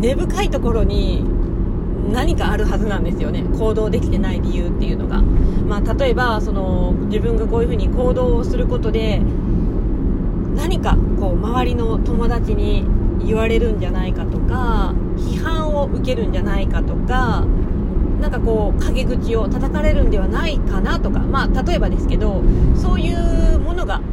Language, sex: Japanese, female